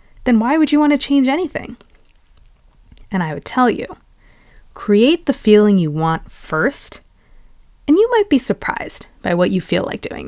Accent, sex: American, female